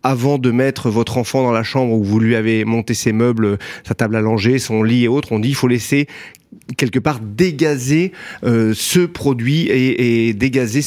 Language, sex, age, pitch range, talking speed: French, male, 30-49, 110-140 Hz, 205 wpm